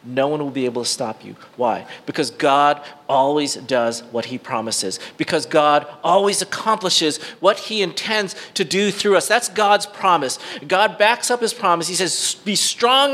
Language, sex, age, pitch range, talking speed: English, male, 40-59, 175-245 Hz, 180 wpm